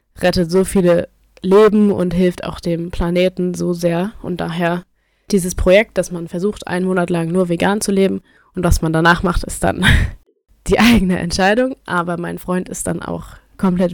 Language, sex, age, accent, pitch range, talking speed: German, female, 20-39, German, 175-190 Hz, 180 wpm